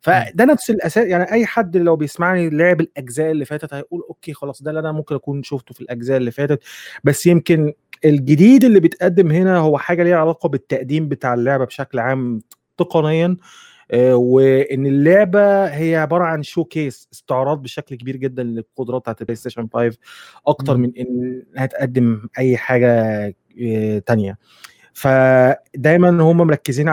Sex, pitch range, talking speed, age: male, 120-155 Hz, 150 wpm, 20-39